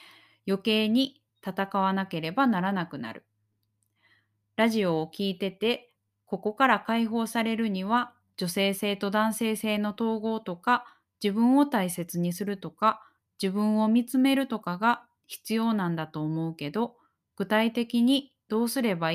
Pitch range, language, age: 180-235 Hz, Japanese, 20-39